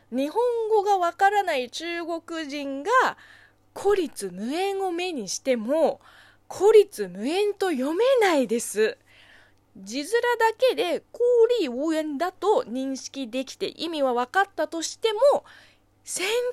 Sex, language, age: female, Japanese, 20-39